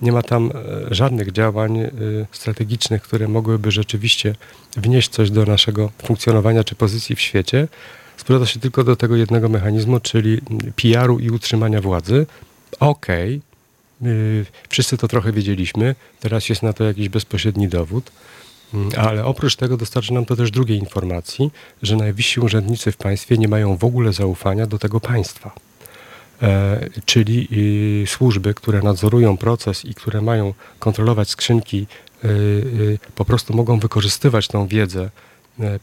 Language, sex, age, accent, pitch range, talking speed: Polish, male, 40-59, native, 105-125 Hz, 145 wpm